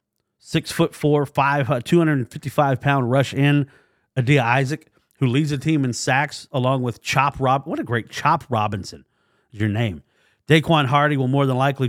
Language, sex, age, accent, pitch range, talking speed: English, male, 40-59, American, 115-145 Hz, 155 wpm